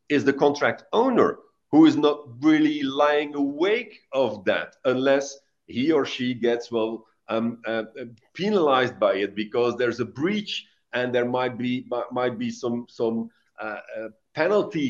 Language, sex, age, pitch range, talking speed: English, male, 50-69, 115-145 Hz, 150 wpm